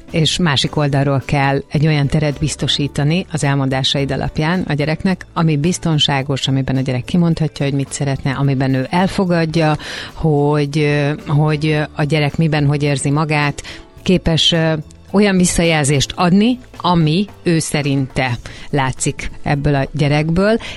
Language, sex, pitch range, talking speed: Hungarian, female, 140-170 Hz, 125 wpm